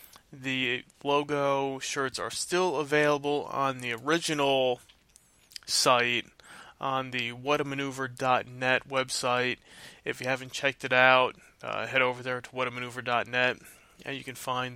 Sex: male